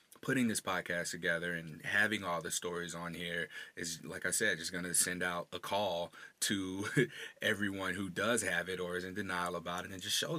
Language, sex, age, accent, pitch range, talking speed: English, male, 30-49, American, 90-110 Hz, 215 wpm